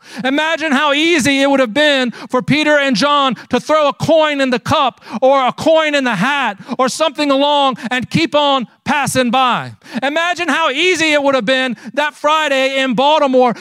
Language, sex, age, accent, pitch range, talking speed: English, male, 40-59, American, 260-315 Hz, 190 wpm